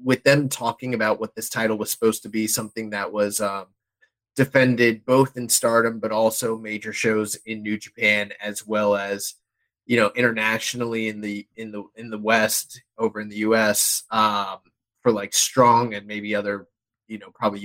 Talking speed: 185 wpm